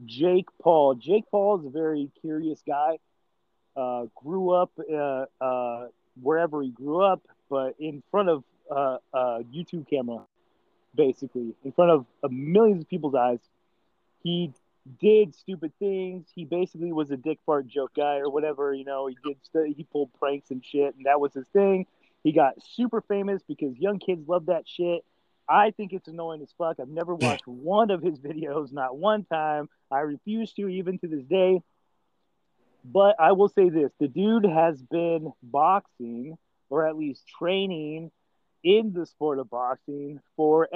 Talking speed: 170 wpm